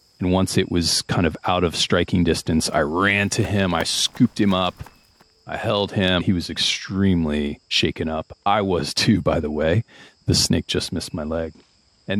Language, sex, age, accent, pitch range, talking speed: English, male, 30-49, American, 80-100 Hz, 190 wpm